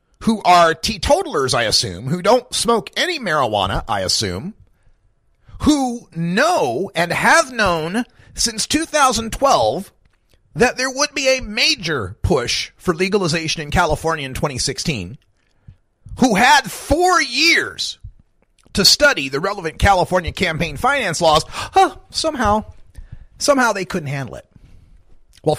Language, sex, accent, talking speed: English, male, American, 120 wpm